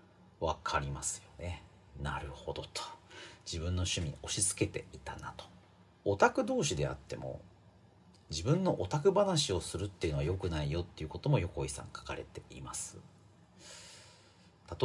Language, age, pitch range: Japanese, 40-59, 85-140 Hz